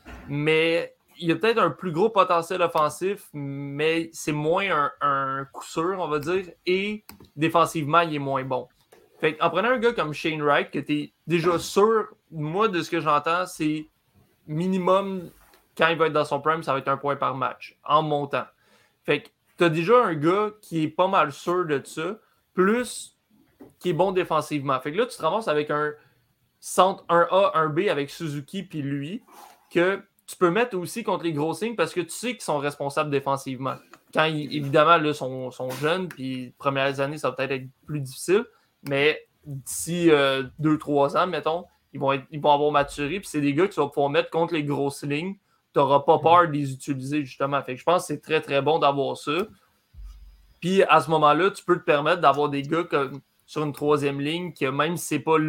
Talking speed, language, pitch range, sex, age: 210 wpm, French, 140-175 Hz, male, 20-39